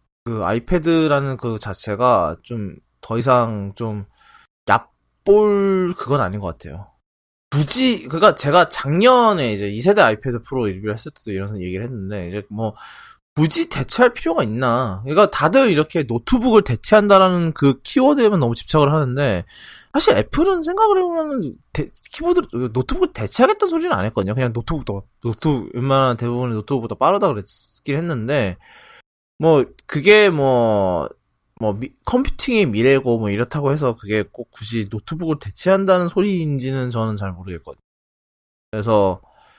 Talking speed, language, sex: 120 wpm, English, male